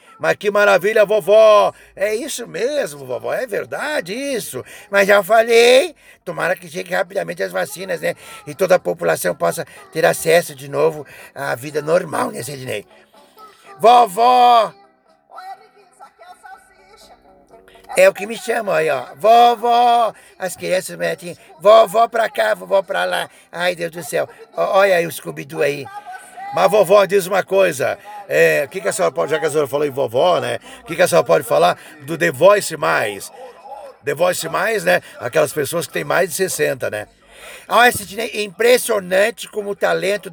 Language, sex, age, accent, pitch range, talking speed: Portuguese, male, 60-79, Brazilian, 175-235 Hz, 160 wpm